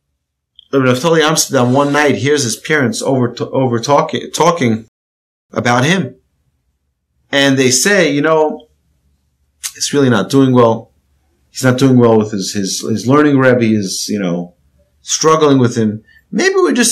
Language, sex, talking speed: English, male, 150 wpm